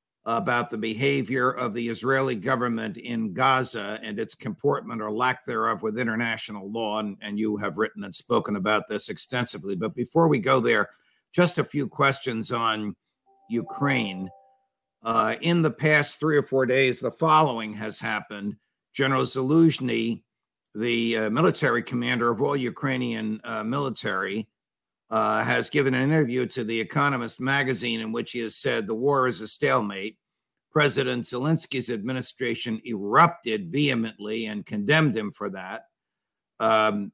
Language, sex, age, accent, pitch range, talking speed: English, male, 50-69, American, 110-140 Hz, 150 wpm